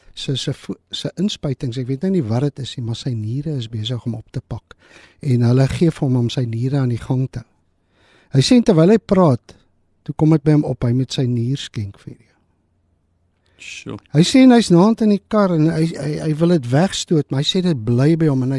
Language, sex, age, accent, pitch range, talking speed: English, male, 50-69, Dutch, 125-175 Hz, 235 wpm